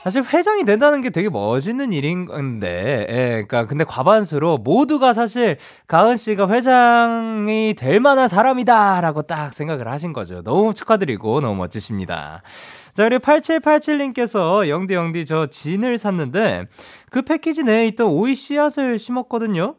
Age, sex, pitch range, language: 20-39, male, 150-235 Hz, Korean